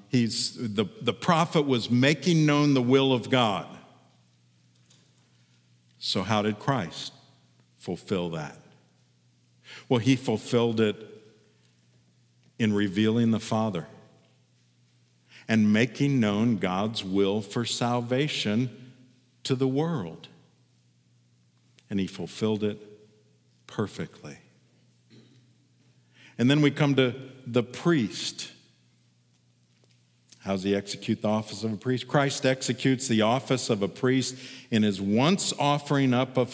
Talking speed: 110 wpm